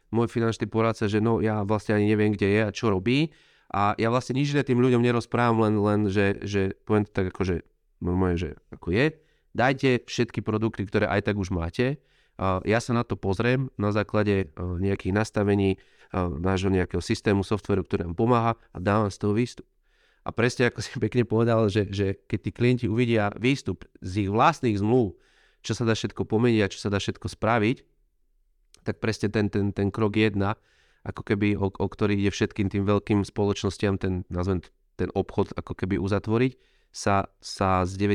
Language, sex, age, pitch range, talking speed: Slovak, male, 30-49, 95-115 Hz, 185 wpm